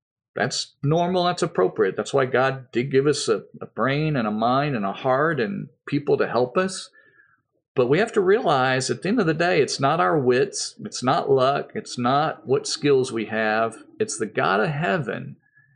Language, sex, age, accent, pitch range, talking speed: English, male, 40-59, American, 135-210 Hz, 200 wpm